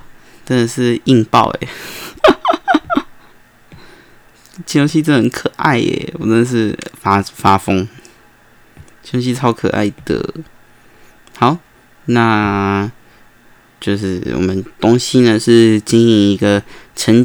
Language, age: Chinese, 20-39